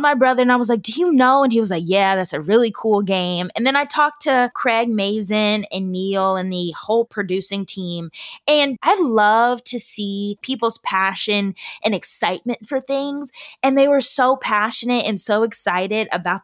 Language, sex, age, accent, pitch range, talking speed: English, female, 20-39, American, 190-245 Hz, 195 wpm